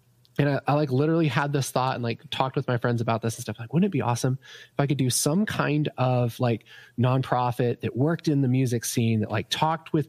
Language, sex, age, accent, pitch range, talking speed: English, male, 20-39, American, 120-145 Hz, 250 wpm